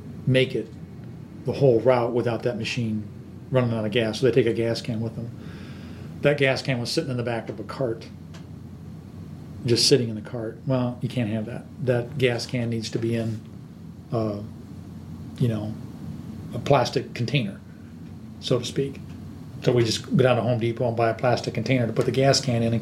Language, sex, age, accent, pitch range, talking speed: English, male, 40-59, American, 110-130 Hz, 200 wpm